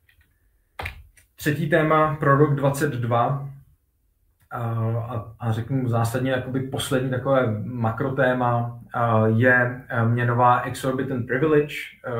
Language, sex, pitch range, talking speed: Czech, male, 115-130 Hz, 80 wpm